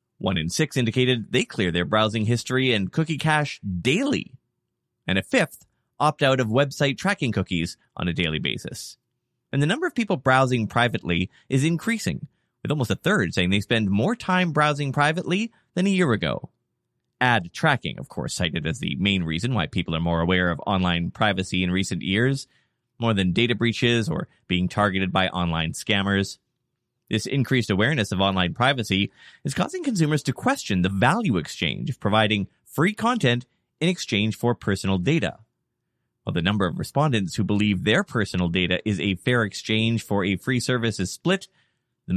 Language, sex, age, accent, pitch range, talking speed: English, male, 30-49, American, 100-140 Hz, 175 wpm